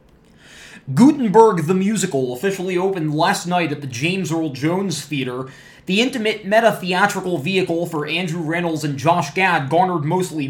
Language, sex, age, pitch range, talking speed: English, male, 20-39, 150-200 Hz, 145 wpm